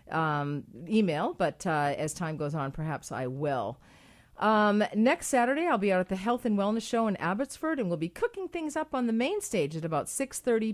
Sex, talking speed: female, 220 wpm